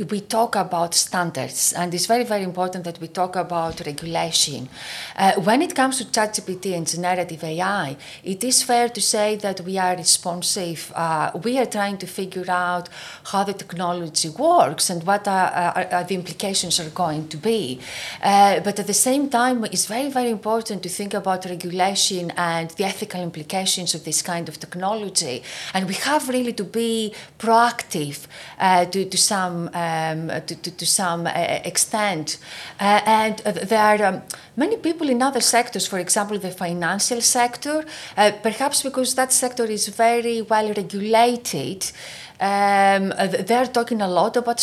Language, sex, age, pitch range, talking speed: English, female, 30-49, 175-225 Hz, 170 wpm